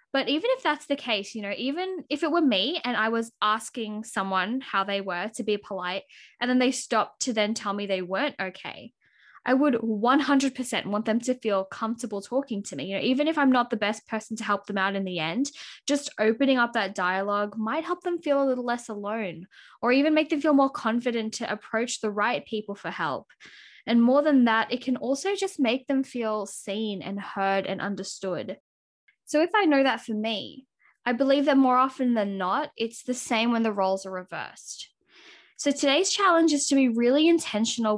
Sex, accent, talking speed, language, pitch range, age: female, Australian, 215 wpm, English, 210-275 Hz, 10-29